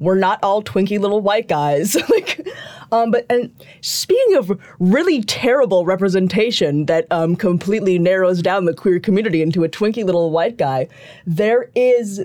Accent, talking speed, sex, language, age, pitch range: American, 155 wpm, female, English, 20-39, 165-215 Hz